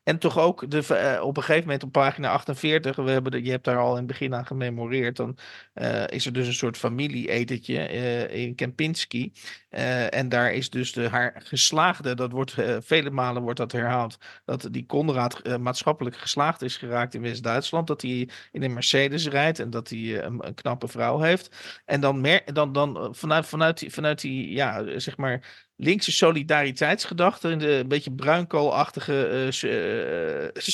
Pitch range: 125-165 Hz